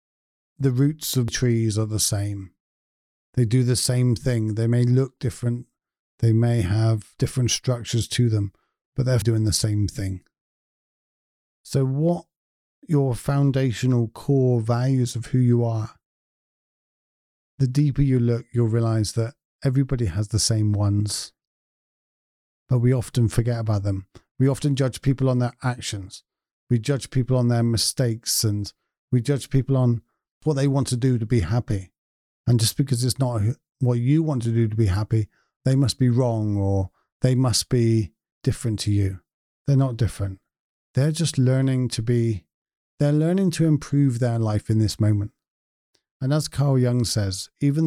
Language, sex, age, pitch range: English, male, 40-59, 110-130 Hz